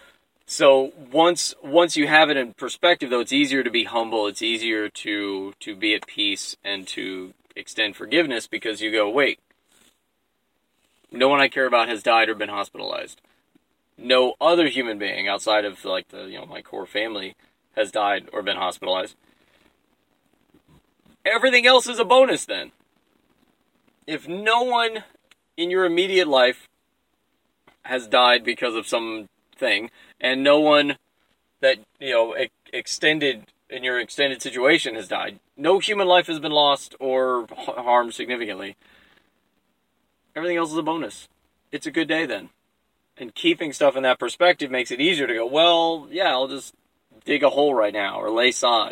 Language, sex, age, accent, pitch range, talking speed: English, male, 20-39, American, 120-165 Hz, 160 wpm